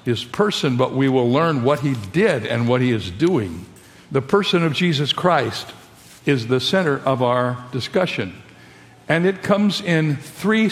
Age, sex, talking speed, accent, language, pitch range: 60-79, male, 170 wpm, American, English, 120-155 Hz